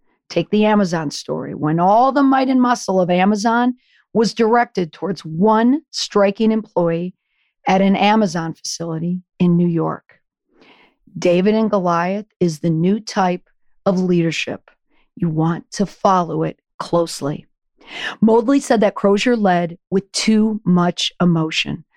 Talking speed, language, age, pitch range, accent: 135 wpm, English, 40-59, 175-230 Hz, American